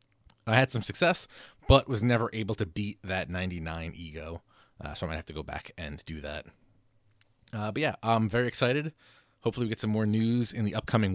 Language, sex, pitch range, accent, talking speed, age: English, male, 95-120 Hz, American, 210 wpm, 30-49